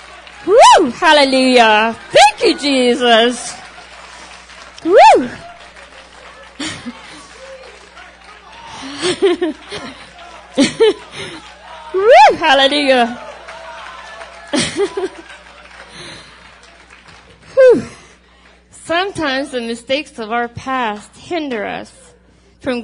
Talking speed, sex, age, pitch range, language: 40 wpm, female, 40-59, 225-310 Hz, English